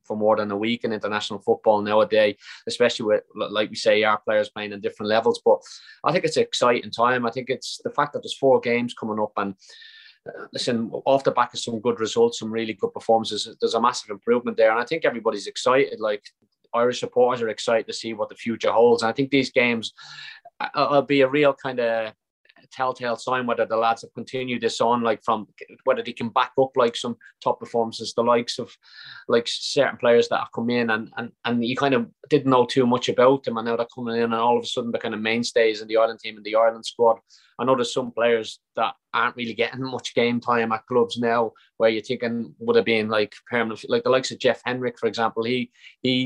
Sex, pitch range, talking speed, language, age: male, 115-135 Hz, 235 wpm, English, 20-39